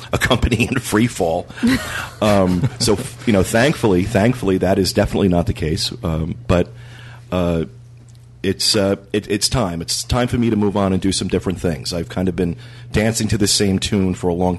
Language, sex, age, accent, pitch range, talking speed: English, male, 40-59, American, 85-115 Hz, 200 wpm